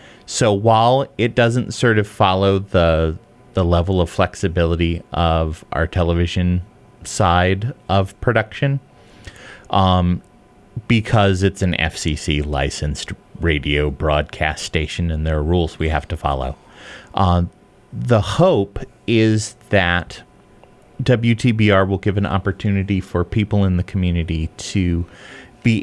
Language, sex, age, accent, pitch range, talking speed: English, male, 30-49, American, 85-110 Hz, 120 wpm